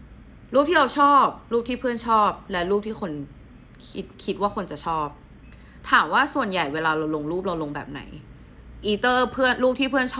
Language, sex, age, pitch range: Thai, female, 20-39, 160-240 Hz